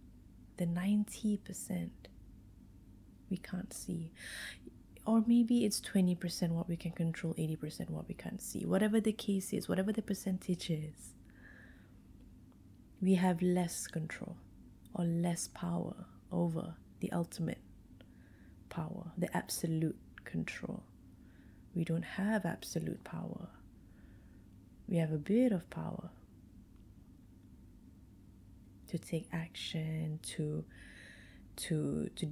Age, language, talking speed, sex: 30-49, English, 105 wpm, female